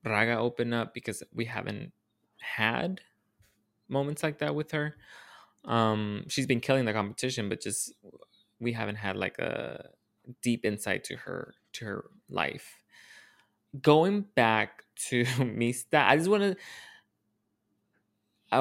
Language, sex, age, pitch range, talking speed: English, male, 20-39, 105-130 Hz, 130 wpm